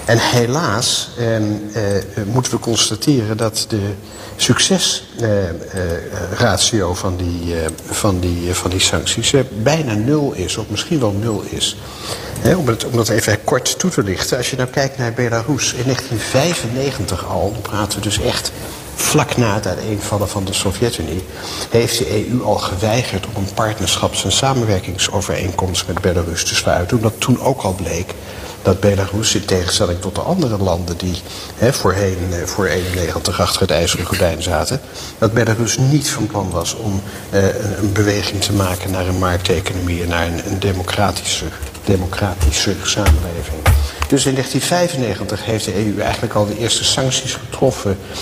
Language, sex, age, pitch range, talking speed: Dutch, male, 60-79, 95-115 Hz, 160 wpm